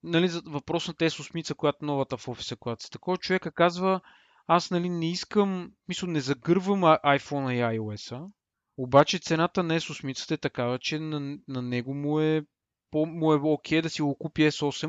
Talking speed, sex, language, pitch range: 170 wpm, male, Bulgarian, 135-170 Hz